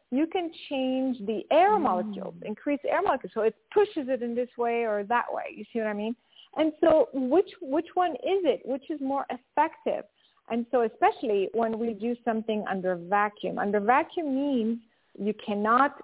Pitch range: 210-285 Hz